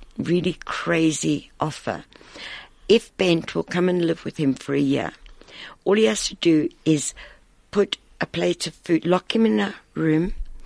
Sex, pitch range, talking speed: female, 140-175 Hz, 170 wpm